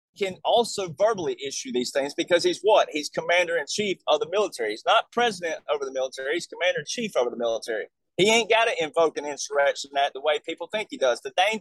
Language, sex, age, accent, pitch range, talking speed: English, male, 30-49, American, 165-230 Hz, 235 wpm